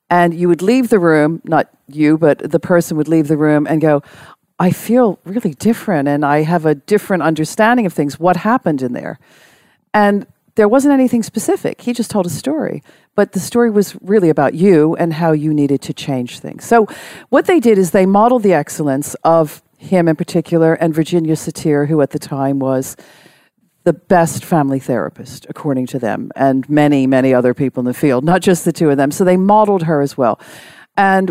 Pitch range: 150-200 Hz